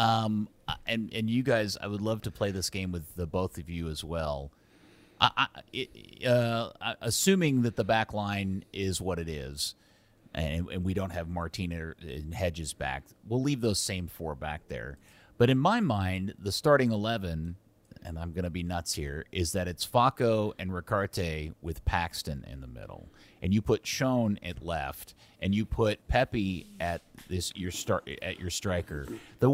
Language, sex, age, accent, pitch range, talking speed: English, male, 30-49, American, 85-115 Hz, 185 wpm